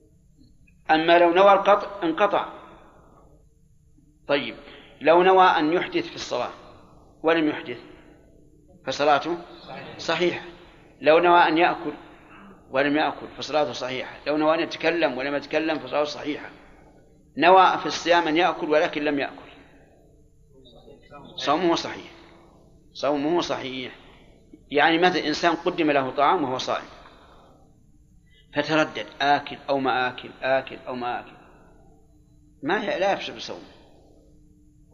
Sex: male